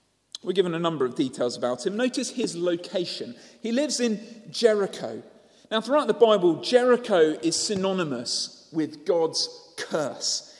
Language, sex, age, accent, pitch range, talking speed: English, male, 40-59, British, 150-225 Hz, 140 wpm